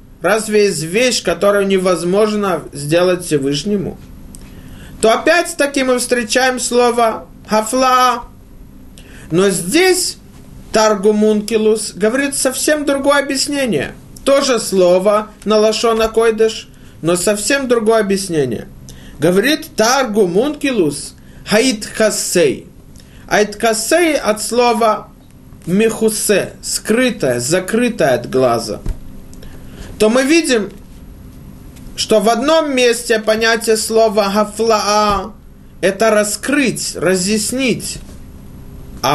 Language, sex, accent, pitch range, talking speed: Russian, male, native, 180-250 Hz, 85 wpm